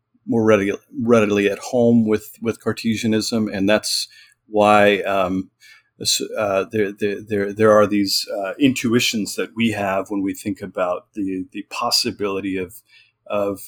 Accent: American